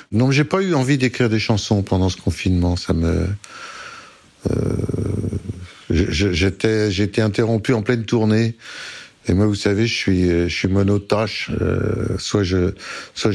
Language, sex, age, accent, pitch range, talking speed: French, male, 60-79, French, 90-110 Hz, 160 wpm